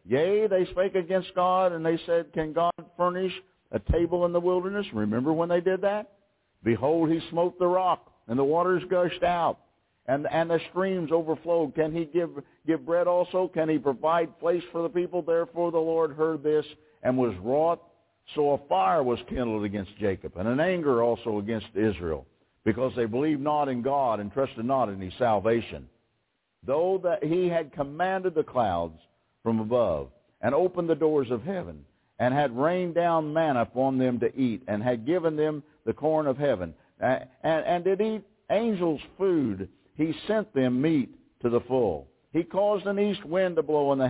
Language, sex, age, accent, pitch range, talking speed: English, male, 60-79, American, 125-175 Hz, 185 wpm